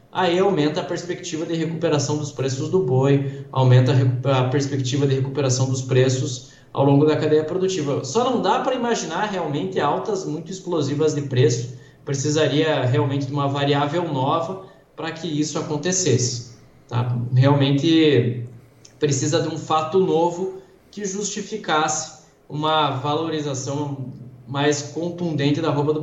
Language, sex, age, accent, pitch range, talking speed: Portuguese, male, 20-39, Brazilian, 130-160 Hz, 135 wpm